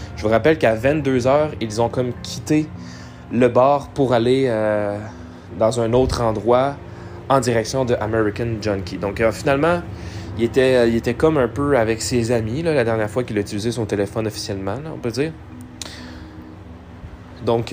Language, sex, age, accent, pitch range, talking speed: French, male, 20-39, Canadian, 100-130 Hz, 160 wpm